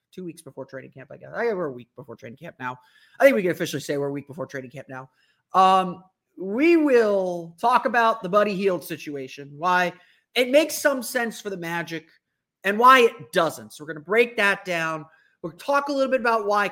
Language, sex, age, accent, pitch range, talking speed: English, male, 30-49, American, 155-210 Hz, 230 wpm